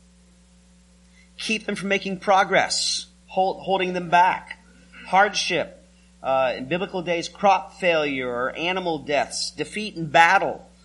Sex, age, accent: male, 40-59, American